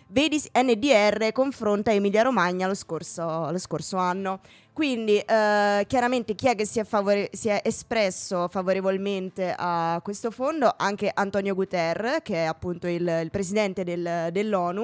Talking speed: 145 wpm